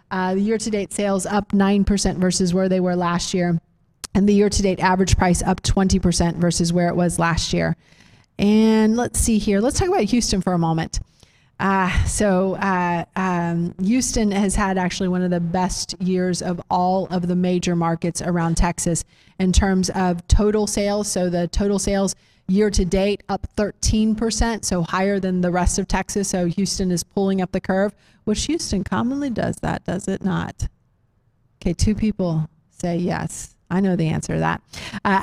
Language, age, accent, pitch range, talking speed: English, 30-49, American, 180-205 Hz, 180 wpm